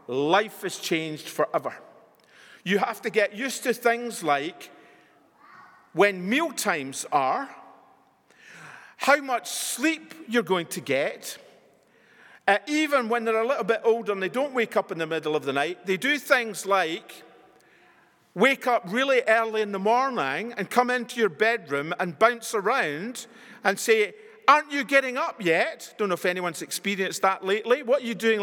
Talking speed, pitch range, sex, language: 165 wpm, 175-245 Hz, male, English